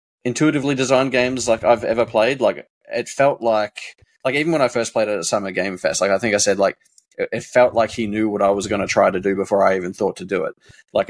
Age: 20-39